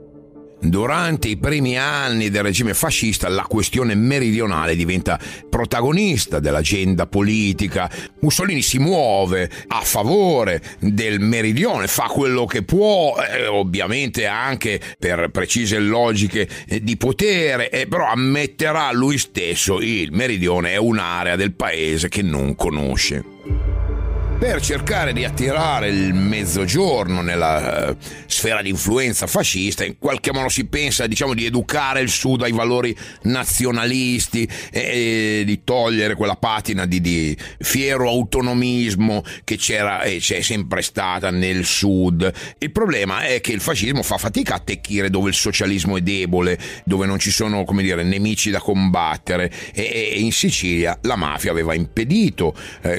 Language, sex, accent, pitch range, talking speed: Italian, male, native, 90-120 Hz, 135 wpm